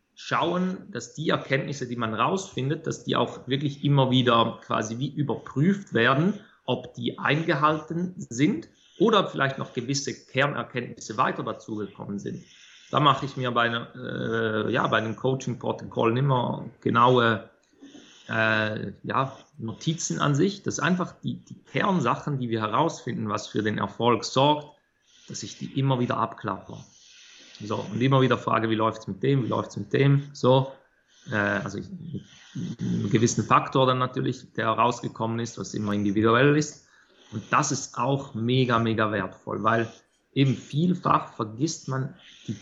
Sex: male